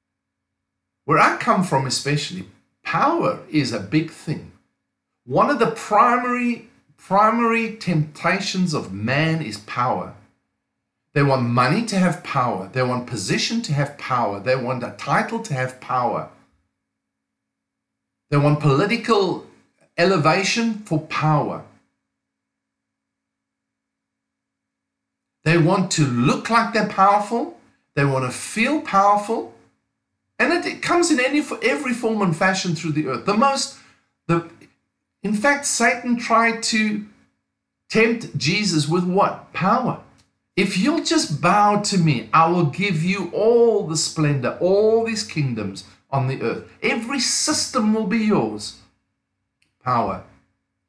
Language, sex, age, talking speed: English, male, 50-69, 130 wpm